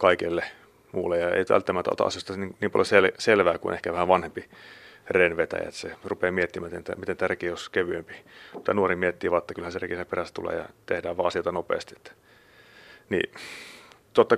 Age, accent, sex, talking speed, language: 30-49, native, male, 180 wpm, Finnish